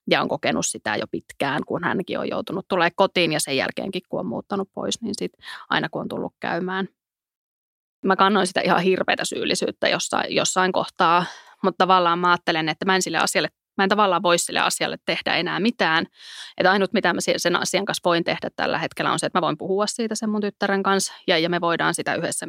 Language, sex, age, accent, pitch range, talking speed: Finnish, female, 20-39, native, 175-200 Hz, 215 wpm